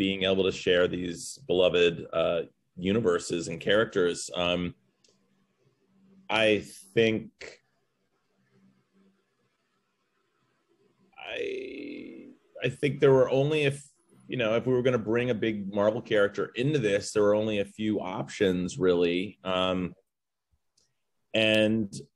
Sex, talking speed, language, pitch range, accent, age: male, 115 wpm, English, 95-120 Hz, American, 30-49